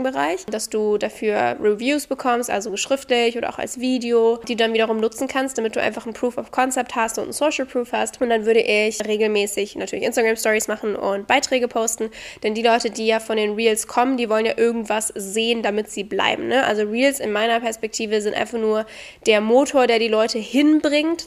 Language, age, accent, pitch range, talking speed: German, 10-29, German, 215-255 Hz, 205 wpm